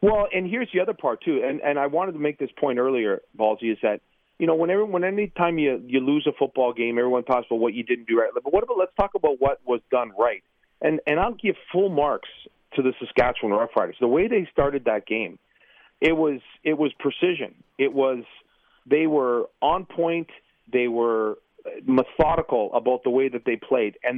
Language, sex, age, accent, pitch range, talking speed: English, male, 40-59, American, 135-170 Hz, 220 wpm